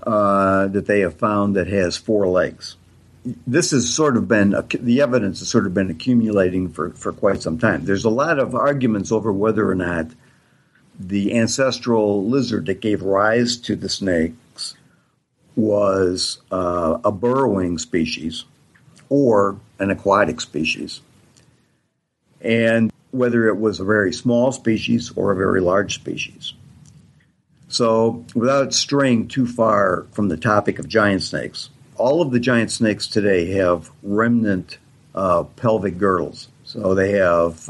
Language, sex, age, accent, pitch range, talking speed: English, male, 60-79, American, 95-120 Hz, 145 wpm